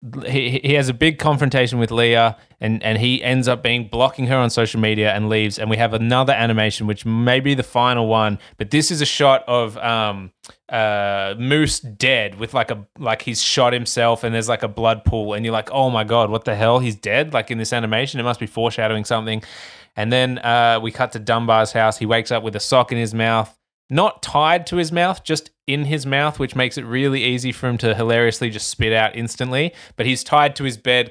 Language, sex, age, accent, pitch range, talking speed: English, male, 20-39, Australian, 115-140 Hz, 230 wpm